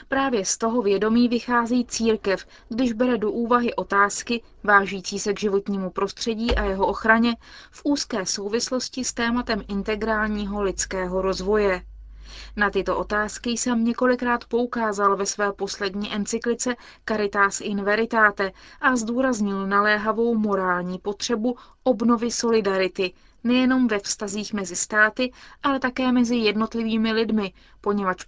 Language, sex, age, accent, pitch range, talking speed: Czech, female, 20-39, native, 195-235 Hz, 125 wpm